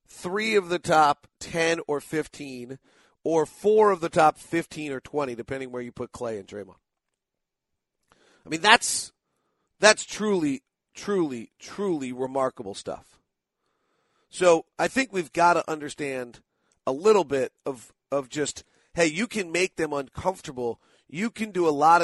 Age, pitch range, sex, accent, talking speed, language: 40-59, 145-195 Hz, male, American, 150 wpm, English